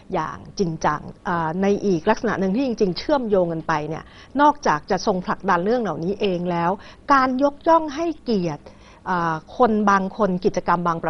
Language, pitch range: Thai, 170-225 Hz